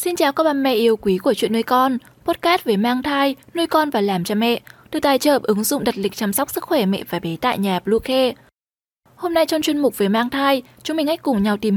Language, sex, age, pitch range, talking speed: Vietnamese, female, 10-29, 210-290 Hz, 270 wpm